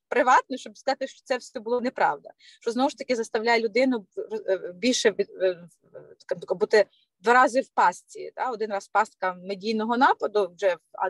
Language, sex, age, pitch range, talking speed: Ukrainian, female, 30-49, 215-285 Hz, 145 wpm